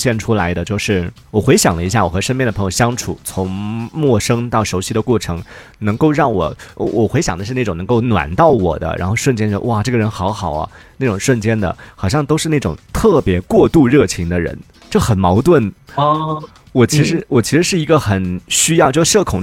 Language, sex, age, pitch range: Chinese, male, 30-49, 95-130 Hz